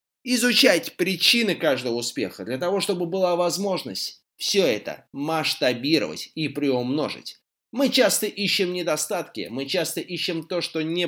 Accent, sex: native, male